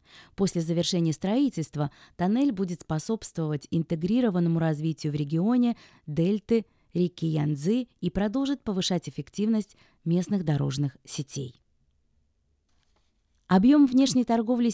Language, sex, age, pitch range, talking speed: Russian, female, 20-39, 155-205 Hz, 95 wpm